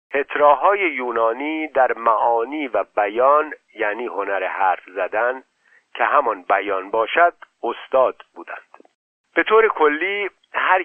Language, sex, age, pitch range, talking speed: Persian, male, 50-69, 125-165 Hz, 110 wpm